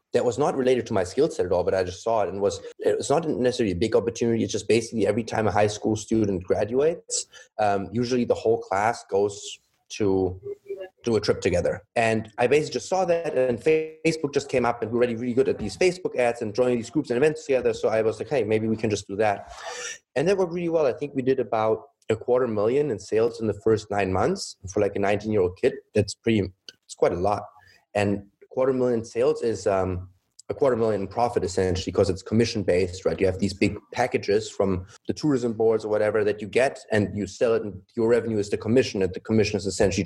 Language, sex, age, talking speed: English, male, 30-49, 240 wpm